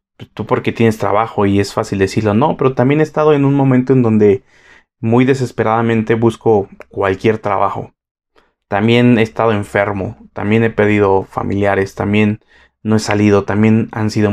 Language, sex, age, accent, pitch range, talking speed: Spanish, male, 20-39, Mexican, 105-125 Hz, 160 wpm